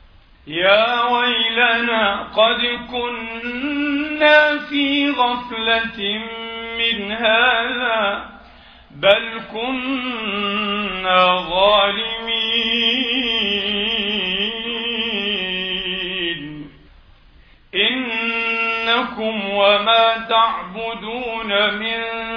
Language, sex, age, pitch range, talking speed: Arabic, male, 50-69, 200-230 Hz, 40 wpm